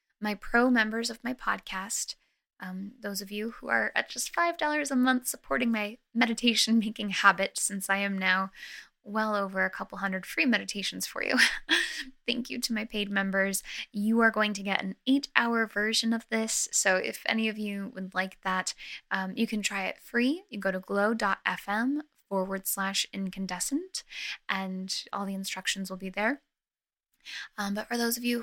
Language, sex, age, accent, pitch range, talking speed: English, female, 10-29, American, 195-230 Hz, 175 wpm